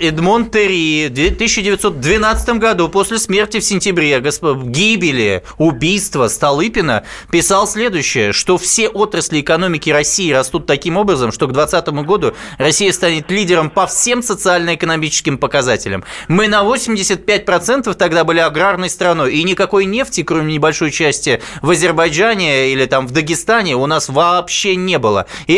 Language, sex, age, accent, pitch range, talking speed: Russian, male, 20-39, native, 155-200 Hz, 135 wpm